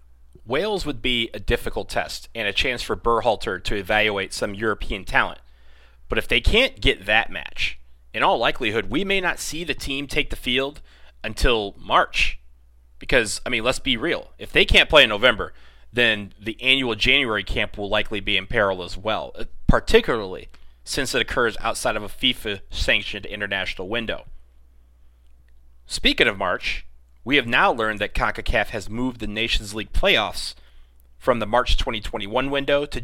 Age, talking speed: 30-49, 165 wpm